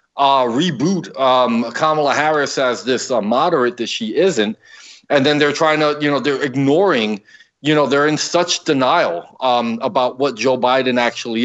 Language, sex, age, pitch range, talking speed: English, male, 40-59, 125-150 Hz, 175 wpm